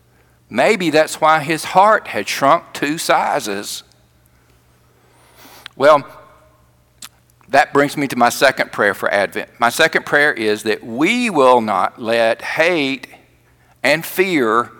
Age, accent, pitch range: 50-69, American, 110-150 Hz